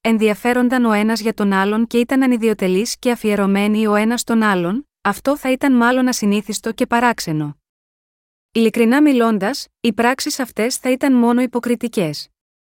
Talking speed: 145 wpm